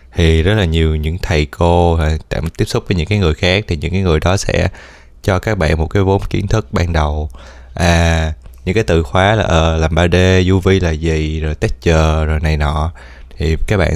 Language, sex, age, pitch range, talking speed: Vietnamese, male, 20-39, 75-90 Hz, 220 wpm